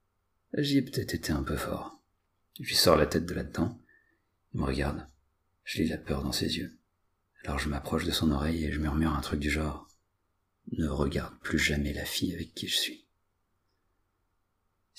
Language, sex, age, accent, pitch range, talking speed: French, male, 40-59, French, 75-95 Hz, 195 wpm